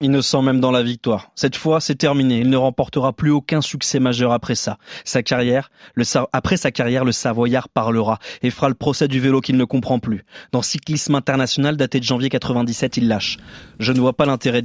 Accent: French